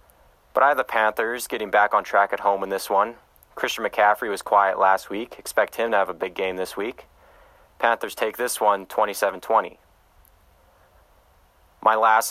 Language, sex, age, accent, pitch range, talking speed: English, male, 30-49, American, 80-100 Hz, 175 wpm